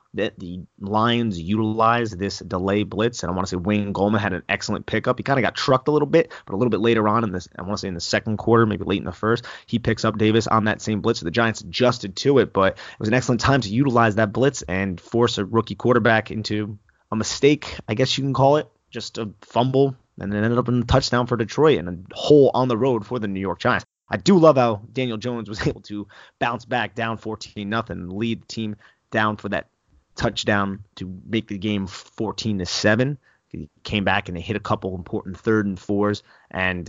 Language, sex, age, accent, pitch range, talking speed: English, male, 30-49, American, 95-115 Hz, 240 wpm